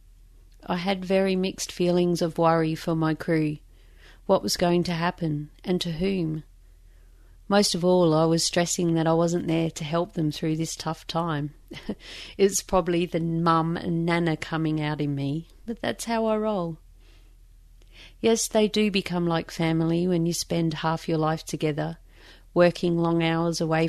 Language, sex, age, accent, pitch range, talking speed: English, female, 40-59, Australian, 150-175 Hz, 170 wpm